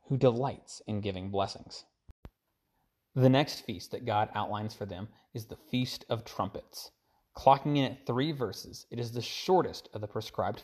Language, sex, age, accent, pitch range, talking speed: English, male, 30-49, American, 110-135 Hz, 170 wpm